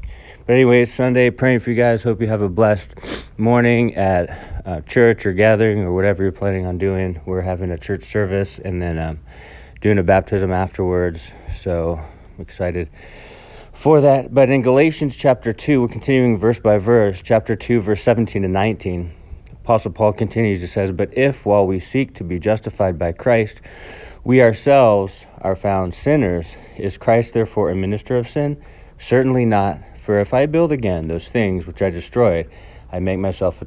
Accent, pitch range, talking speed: American, 90-115 Hz, 180 wpm